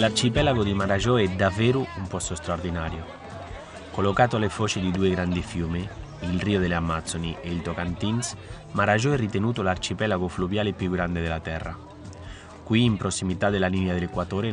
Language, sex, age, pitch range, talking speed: Italian, male, 30-49, 90-110 Hz, 155 wpm